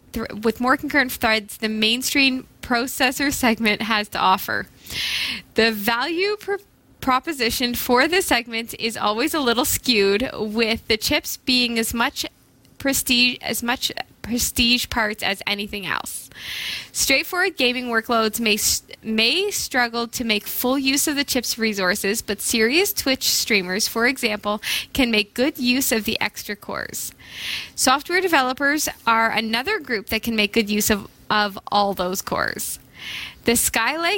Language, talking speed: English, 140 wpm